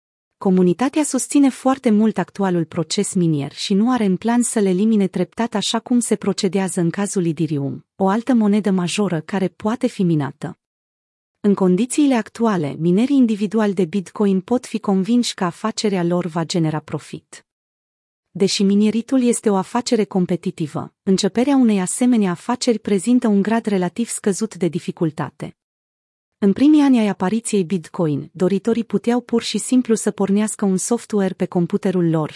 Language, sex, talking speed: Romanian, female, 150 wpm